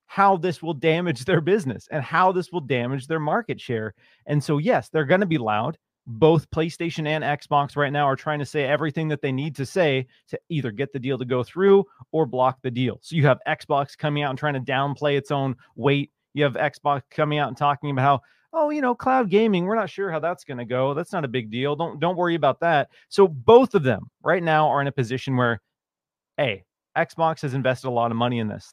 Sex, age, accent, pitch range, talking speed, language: male, 30-49, American, 130-160 Hz, 240 wpm, English